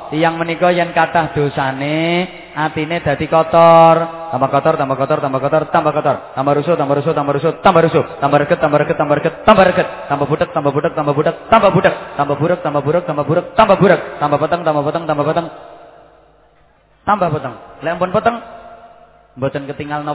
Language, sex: English, male